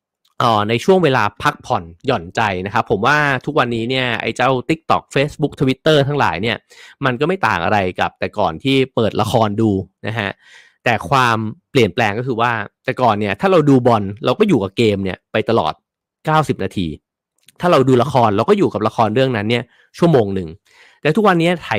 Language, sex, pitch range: English, male, 105-135 Hz